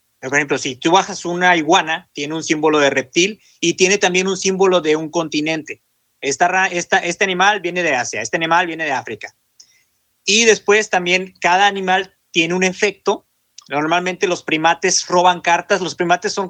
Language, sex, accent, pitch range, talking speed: Spanish, male, Mexican, 155-195 Hz, 175 wpm